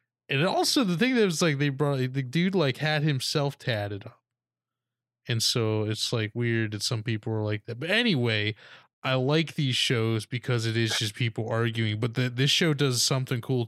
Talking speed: 200 wpm